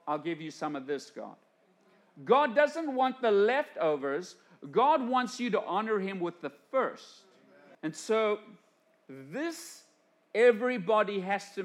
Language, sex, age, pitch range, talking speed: English, male, 50-69, 170-235 Hz, 140 wpm